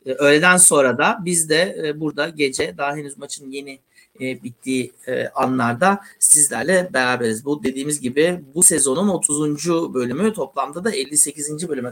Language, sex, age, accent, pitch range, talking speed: Turkish, male, 60-79, native, 130-175 Hz, 130 wpm